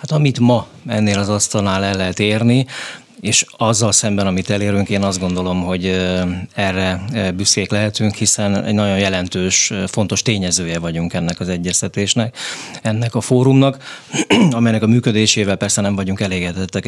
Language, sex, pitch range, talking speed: Hungarian, male, 95-110 Hz, 145 wpm